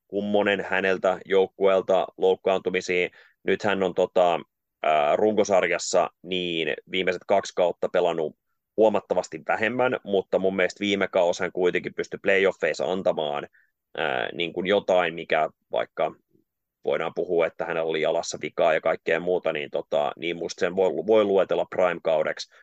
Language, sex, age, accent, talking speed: Finnish, male, 30-49, native, 135 wpm